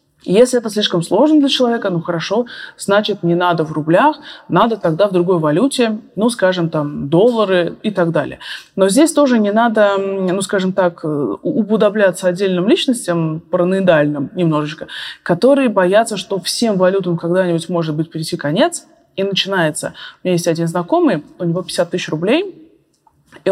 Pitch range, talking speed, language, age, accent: 175-235 Hz, 155 wpm, Russian, 20-39, native